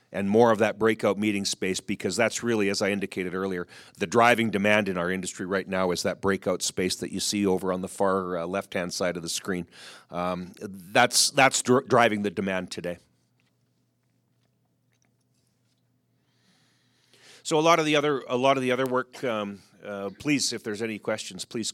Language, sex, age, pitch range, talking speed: English, male, 40-59, 95-120 Hz, 180 wpm